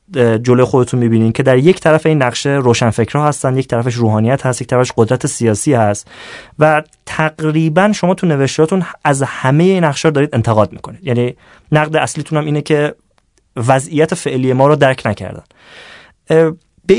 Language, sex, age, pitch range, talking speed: Persian, male, 30-49, 125-170 Hz, 165 wpm